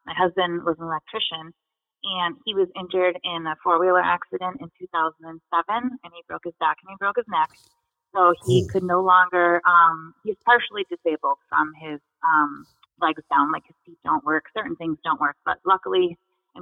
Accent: American